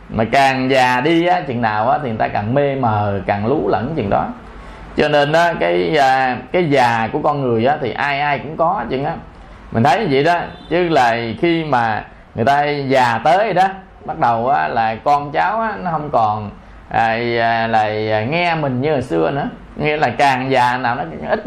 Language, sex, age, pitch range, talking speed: Vietnamese, male, 20-39, 120-170 Hz, 205 wpm